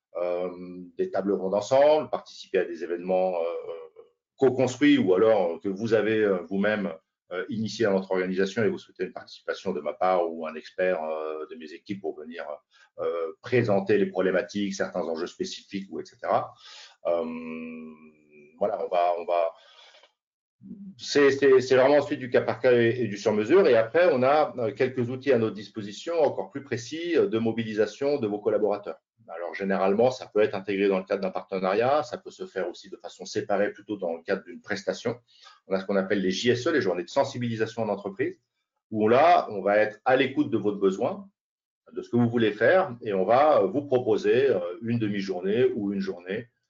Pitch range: 95-135 Hz